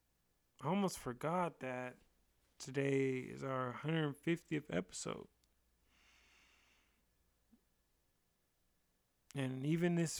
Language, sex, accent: English, male, American